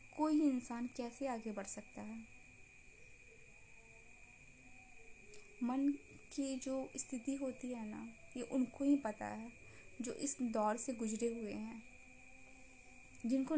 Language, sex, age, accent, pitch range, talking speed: Hindi, female, 20-39, native, 215-270 Hz, 120 wpm